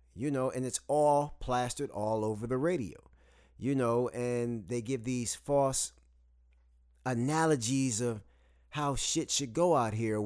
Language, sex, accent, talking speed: English, male, American, 150 wpm